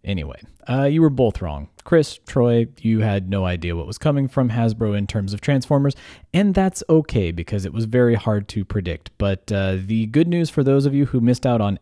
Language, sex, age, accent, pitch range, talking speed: English, male, 20-39, American, 95-125 Hz, 225 wpm